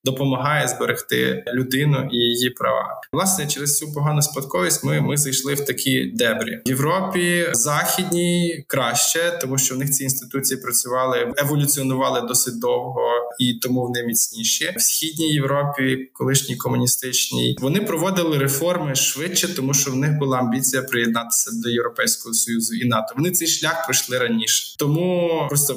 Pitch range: 125-150 Hz